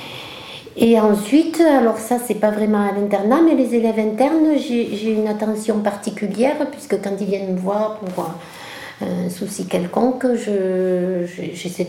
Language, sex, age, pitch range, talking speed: French, female, 60-79, 180-220 Hz, 155 wpm